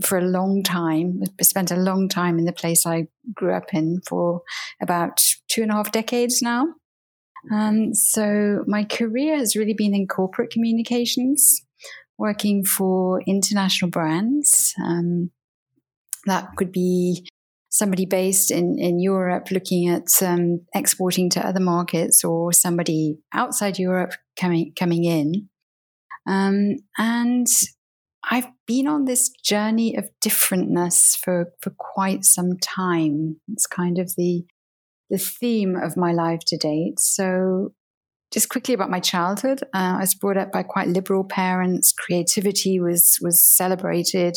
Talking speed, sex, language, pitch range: 140 wpm, female, English, 175-205 Hz